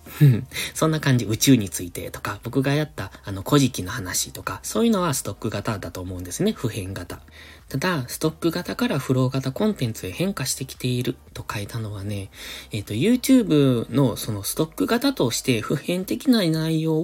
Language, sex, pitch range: Japanese, male, 105-155 Hz